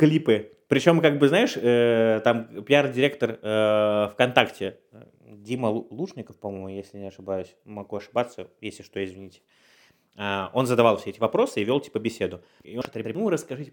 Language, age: Russian, 20-39